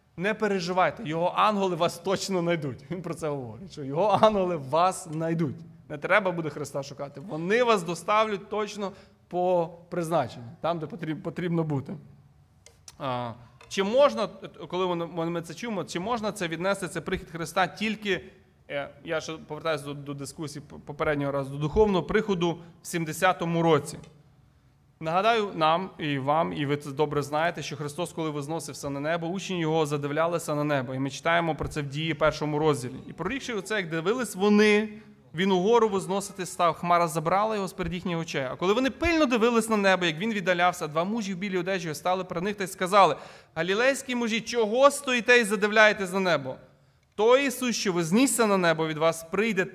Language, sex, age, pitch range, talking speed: Ukrainian, male, 30-49, 155-200 Hz, 165 wpm